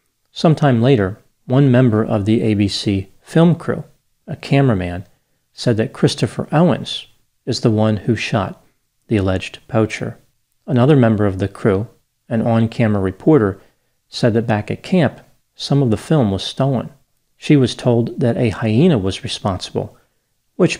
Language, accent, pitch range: English, American, 100-125 Hz